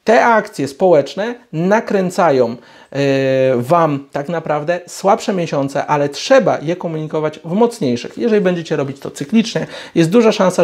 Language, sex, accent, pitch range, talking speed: Polish, male, native, 145-215 Hz, 130 wpm